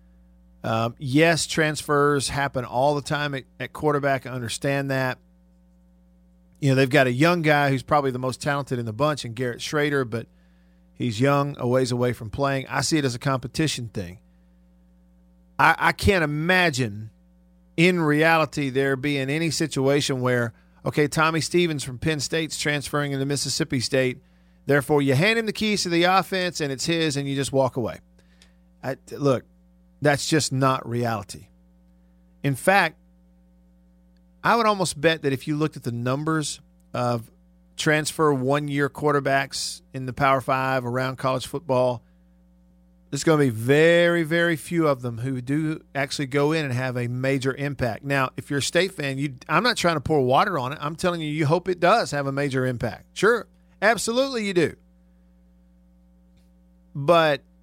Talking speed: 170 wpm